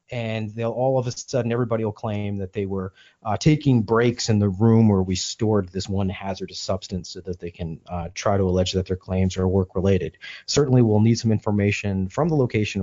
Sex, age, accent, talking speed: male, 30-49, American, 220 wpm